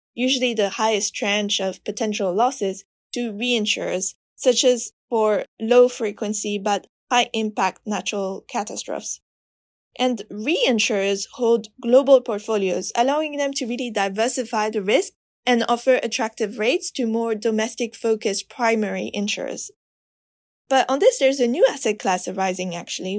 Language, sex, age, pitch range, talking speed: English, female, 20-39, 205-250 Hz, 130 wpm